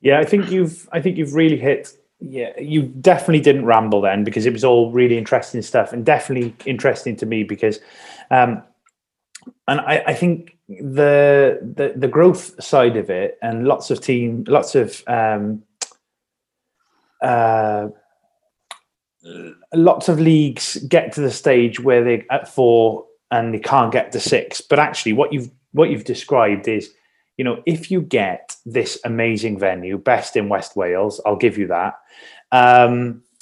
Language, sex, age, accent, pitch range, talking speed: English, male, 20-39, British, 115-155 Hz, 160 wpm